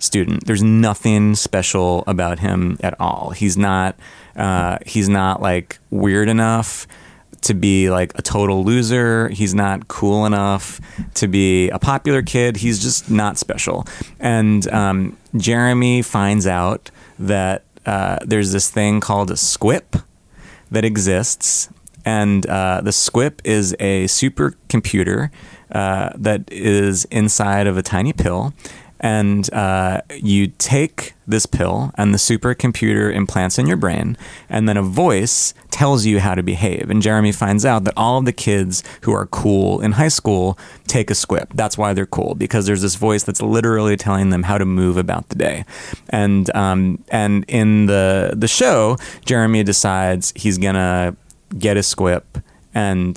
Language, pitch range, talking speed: English, 95-110 Hz, 155 wpm